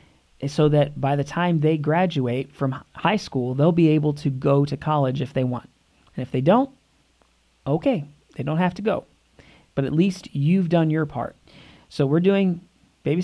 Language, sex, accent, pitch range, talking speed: English, male, American, 140-170 Hz, 185 wpm